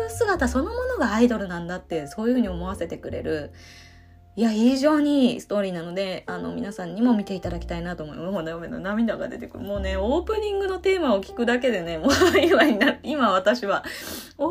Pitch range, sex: 190-295 Hz, female